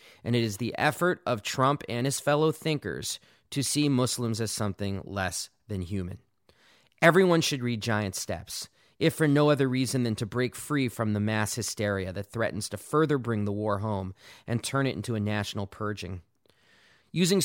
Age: 40-59